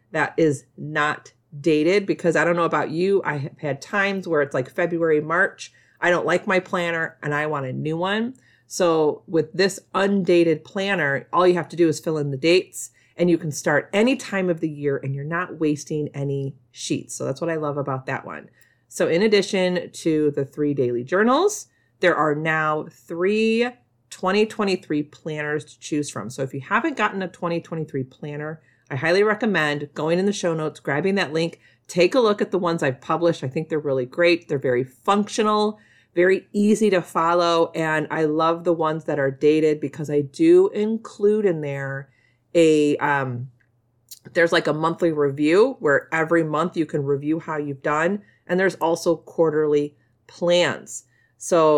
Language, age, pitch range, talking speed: English, 40-59, 145-180 Hz, 185 wpm